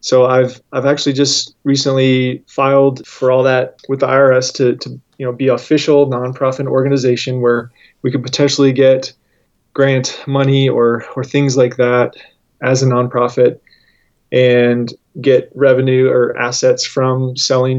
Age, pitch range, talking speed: 20-39, 125-135 Hz, 145 wpm